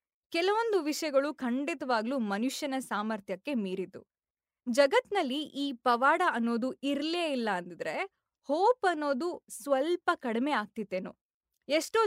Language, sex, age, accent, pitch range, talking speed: Kannada, female, 20-39, native, 235-325 Hz, 95 wpm